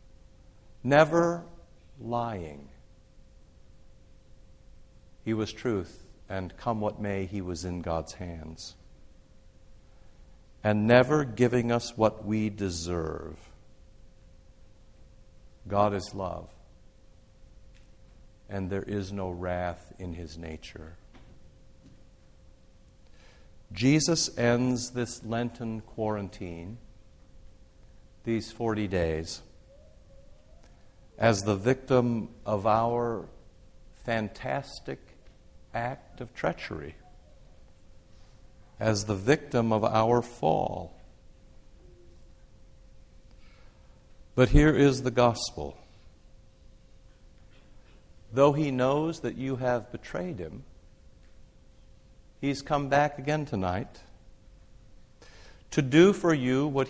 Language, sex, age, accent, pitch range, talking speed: English, male, 50-69, American, 90-120 Hz, 80 wpm